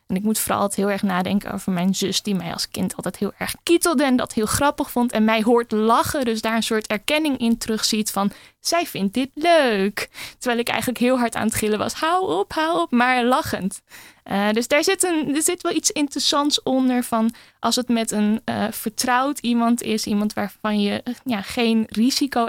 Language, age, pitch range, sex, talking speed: Dutch, 20-39, 210-255 Hz, female, 215 wpm